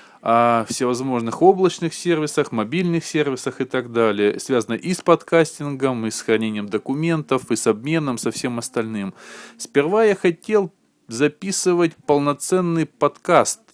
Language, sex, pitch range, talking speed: Russian, male, 115-170 Hz, 125 wpm